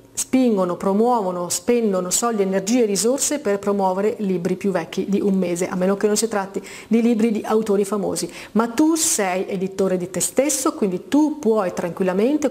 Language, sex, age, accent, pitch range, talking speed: Italian, female, 40-59, native, 190-235 Hz, 175 wpm